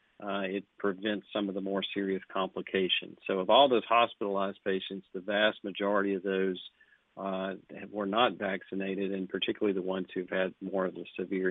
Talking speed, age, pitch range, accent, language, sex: 175 wpm, 50-69, 95-110 Hz, American, English, male